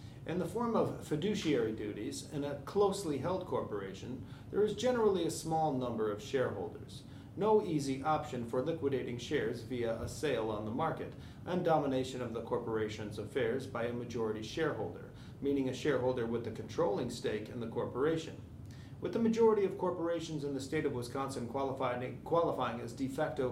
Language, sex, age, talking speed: English, male, 40-59, 170 wpm